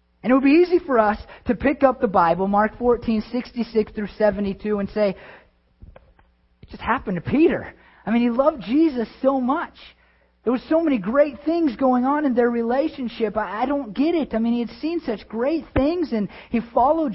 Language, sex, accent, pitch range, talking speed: English, male, American, 160-240 Hz, 205 wpm